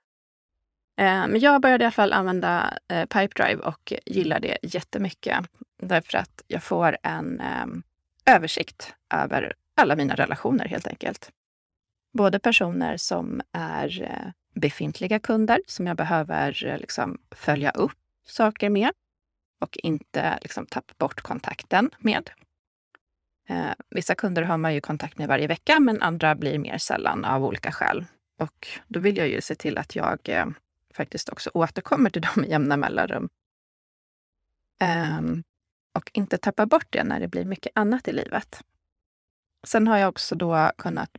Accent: native